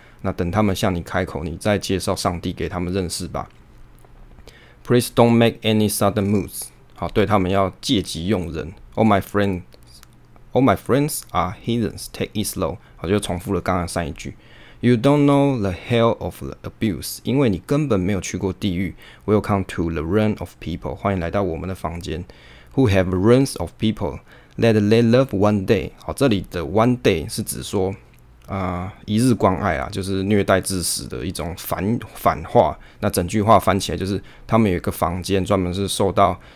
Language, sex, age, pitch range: Chinese, male, 20-39, 90-110 Hz